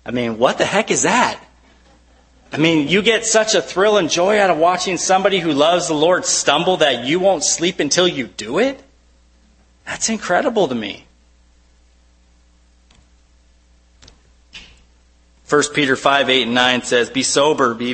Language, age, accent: English, 30-49, American